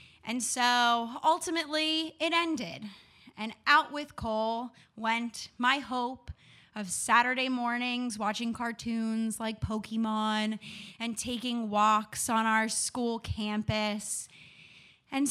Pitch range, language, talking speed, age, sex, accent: 230-330 Hz, English, 105 wpm, 20-39, female, American